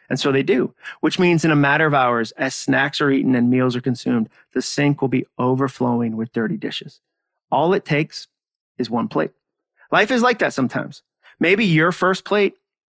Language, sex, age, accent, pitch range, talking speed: English, male, 30-49, American, 130-175 Hz, 195 wpm